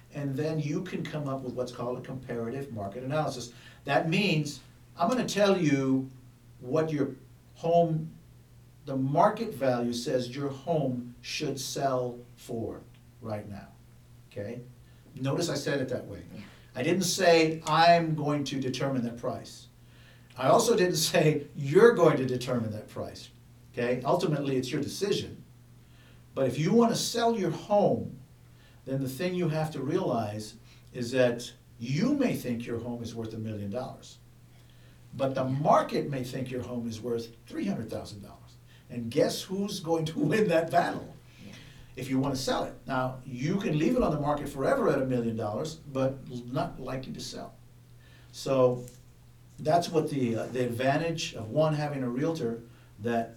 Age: 60-79